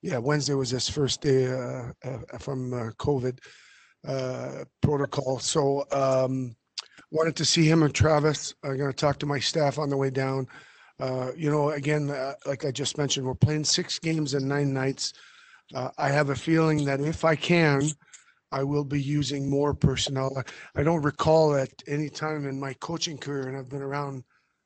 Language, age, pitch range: English, 40-59, 130-150 Hz